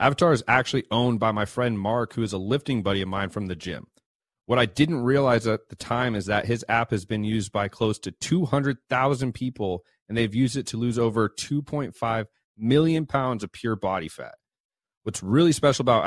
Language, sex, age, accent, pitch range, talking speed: English, male, 30-49, American, 110-135 Hz, 205 wpm